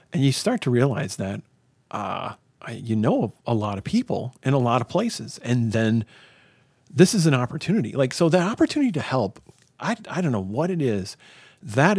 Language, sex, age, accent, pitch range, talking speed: English, male, 40-59, American, 115-160 Hz, 195 wpm